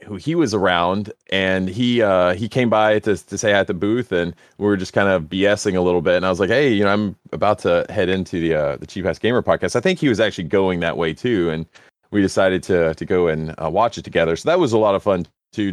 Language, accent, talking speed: English, American, 275 wpm